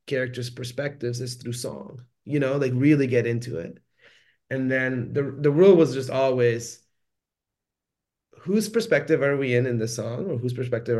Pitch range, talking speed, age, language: 120-150 Hz, 170 wpm, 30-49, English